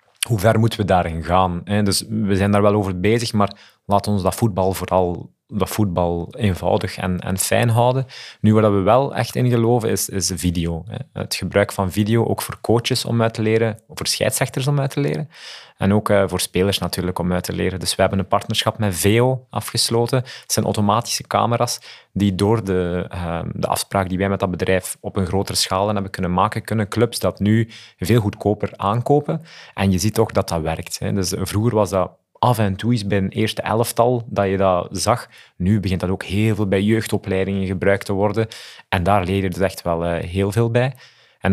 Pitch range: 95-115 Hz